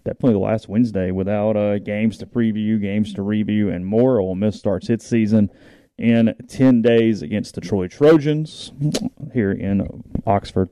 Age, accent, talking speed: 30-49, American, 155 wpm